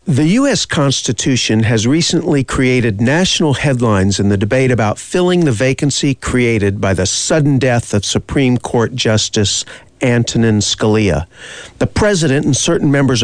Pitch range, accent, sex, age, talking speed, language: 110-155 Hz, American, male, 50-69, 140 wpm, English